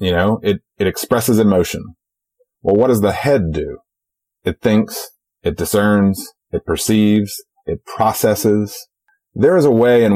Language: English